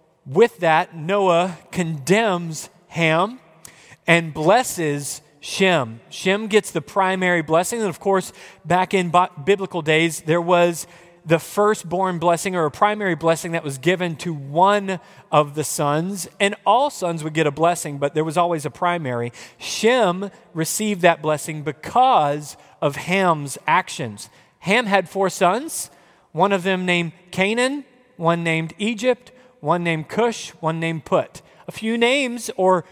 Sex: male